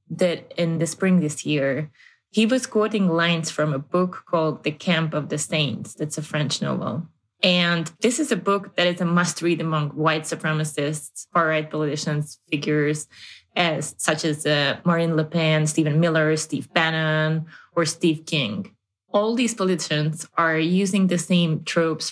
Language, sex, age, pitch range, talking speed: Hungarian, female, 20-39, 155-185 Hz, 165 wpm